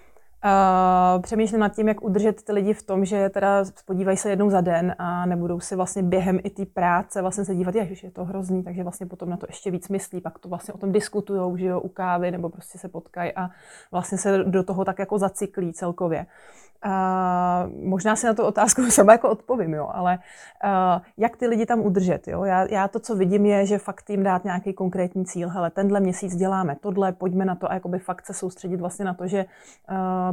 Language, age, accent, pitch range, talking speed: Czech, 20-39, native, 180-200 Hz, 225 wpm